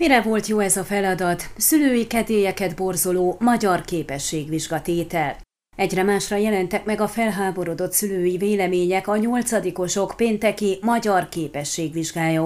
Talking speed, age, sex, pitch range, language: 115 wpm, 30-49, female, 180-220 Hz, Hungarian